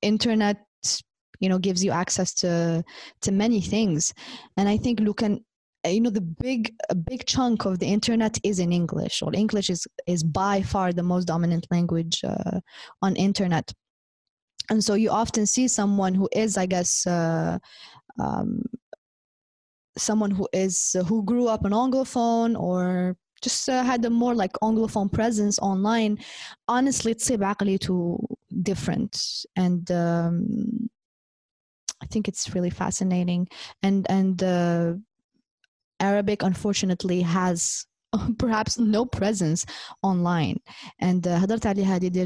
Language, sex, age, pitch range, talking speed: Arabic, female, 20-39, 180-225 Hz, 130 wpm